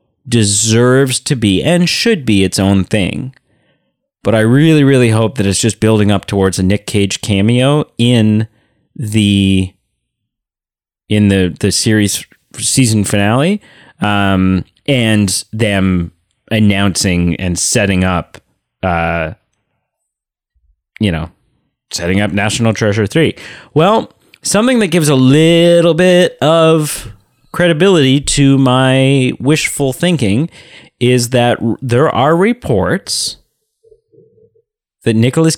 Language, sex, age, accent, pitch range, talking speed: English, male, 30-49, American, 100-145 Hz, 115 wpm